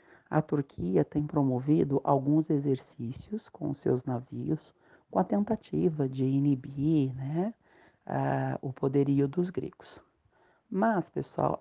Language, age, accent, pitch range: Portuguese, 40-59, Brazilian, 135-165 Hz